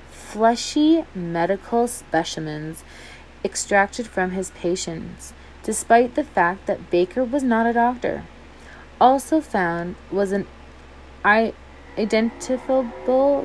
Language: English